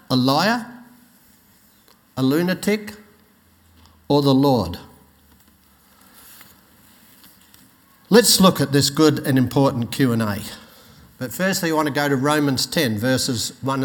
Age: 60-79